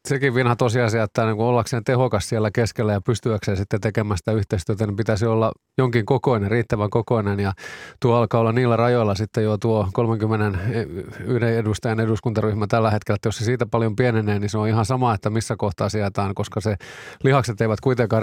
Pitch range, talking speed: 105-120 Hz, 180 wpm